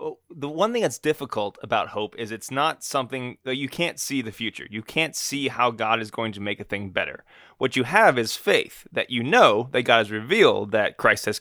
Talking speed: 230 wpm